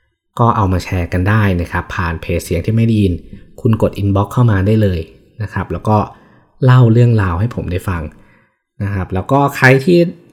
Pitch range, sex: 95-120 Hz, male